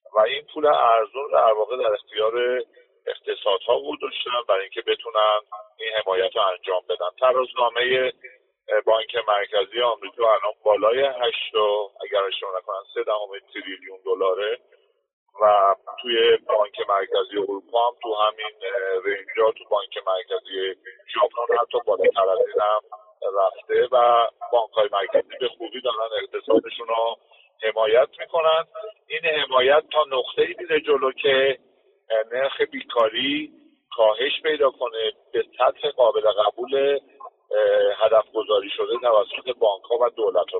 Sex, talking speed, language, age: male, 125 wpm, Persian, 50-69